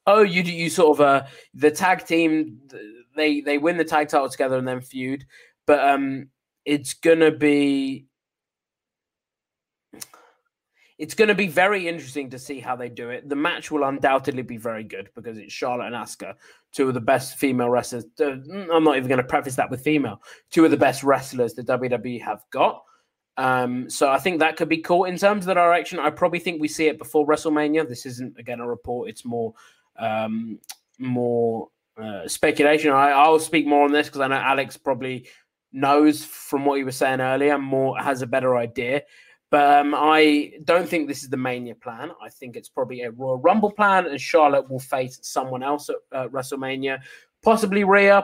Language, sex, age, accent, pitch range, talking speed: English, male, 20-39, British, 130-165 Hz, 195 wpm